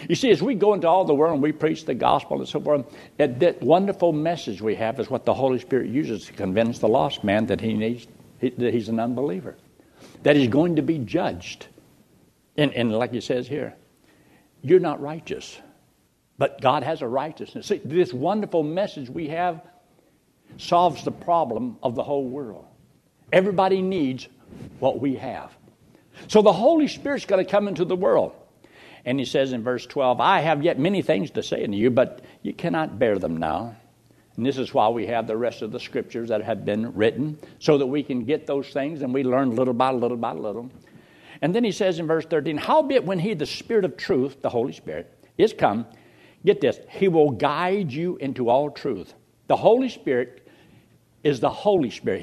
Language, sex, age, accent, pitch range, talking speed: English, male, 60-79, American, 135-190 Hz, 200 wpm